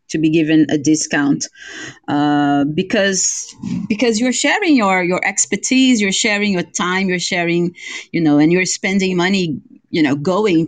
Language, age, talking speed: English, 30-49, 155 wpm